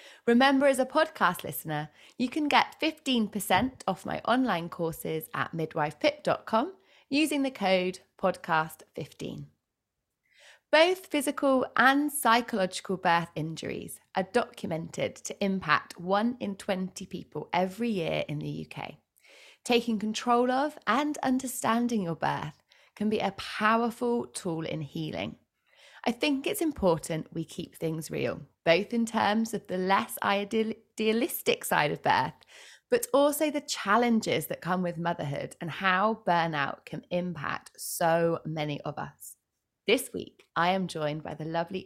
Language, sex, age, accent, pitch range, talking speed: English, female, 20-39, British, 170-255 Hz, 135 wpm